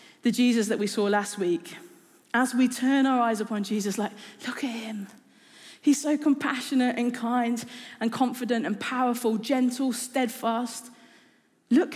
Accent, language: British, English